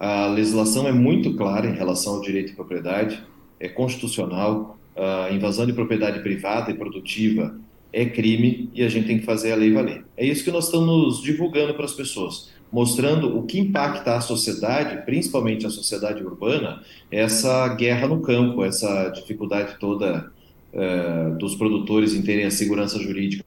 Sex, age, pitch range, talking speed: male, 40-59, 100-120 Hz, 165 wpm